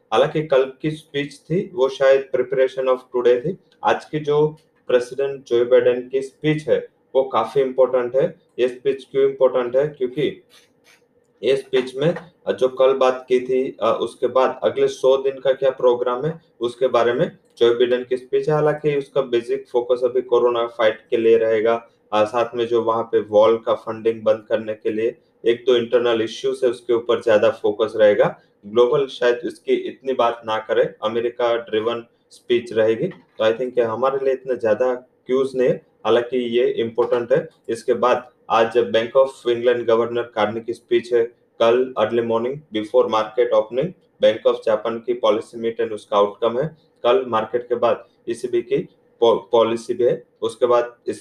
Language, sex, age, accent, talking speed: English, male, 30-49, Indian, 130 wpm